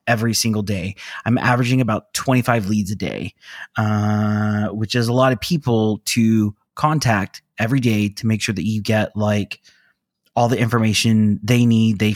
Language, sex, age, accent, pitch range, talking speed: English, male, 30-49, American, 105-135 Hz, 170 wpm